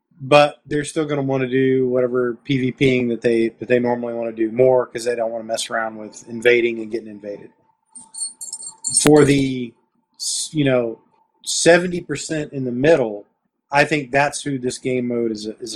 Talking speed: 185 wpm